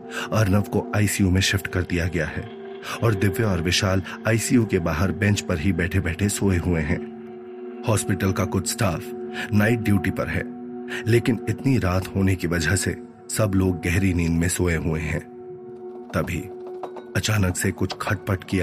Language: Hindi